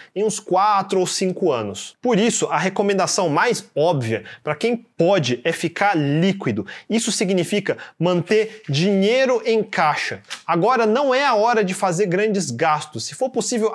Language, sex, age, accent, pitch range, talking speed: Portuguese, male, 30-49, Brazilian, 180-220 Hz, 155 wpm